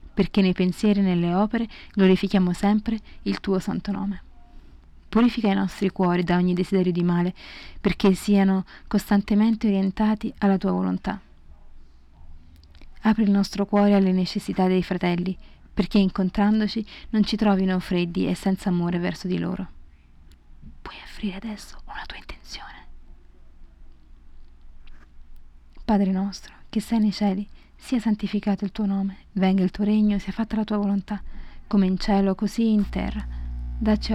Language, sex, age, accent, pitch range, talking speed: Italian, female, 20-39, native, 175-205 Hz, 140 wpm